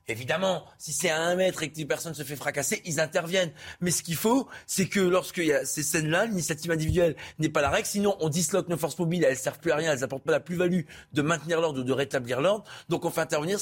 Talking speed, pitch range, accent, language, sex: 260 wpm, 165-195 Hz, French, French, male